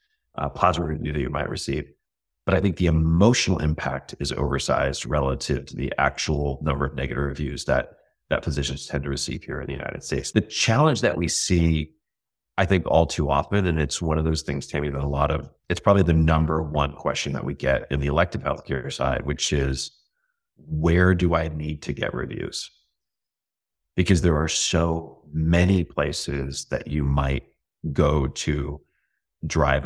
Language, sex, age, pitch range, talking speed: English, male, 30-49, 70-85 Hz, 180 wpm